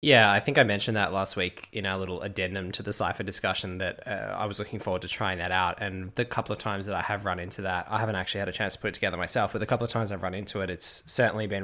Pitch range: 90-110 Hz